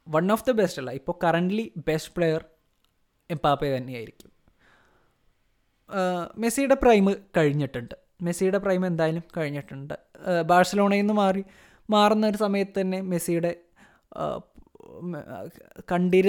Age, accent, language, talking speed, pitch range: 20-39, native, Malayalam, 95 wpm, 150-195 Hz